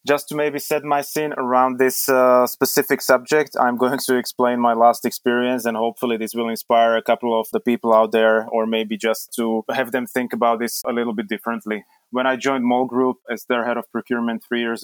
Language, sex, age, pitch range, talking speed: English, male, 20-39, 110-125 Hz, 220 wpm